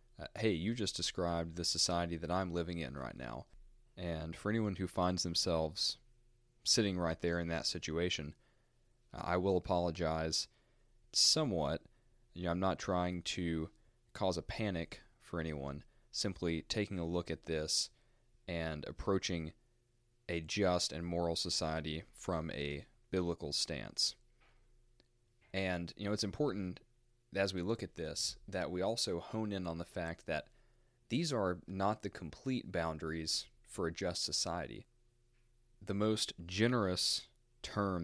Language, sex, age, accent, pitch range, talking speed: English, male, 20-39, American, 85-120 Hz, 140 wpm